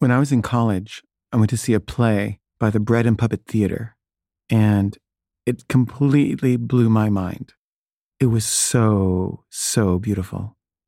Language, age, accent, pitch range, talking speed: English, 40-59, American, 105-120 Hz, 155 wpm